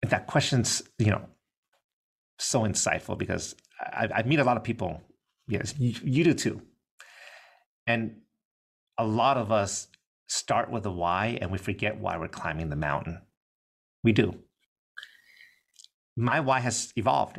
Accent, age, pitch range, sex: American, 30-49, 85-110 Hz, male